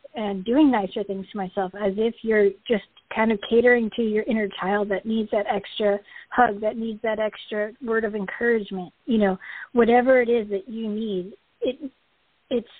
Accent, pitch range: American, 200-230 Hz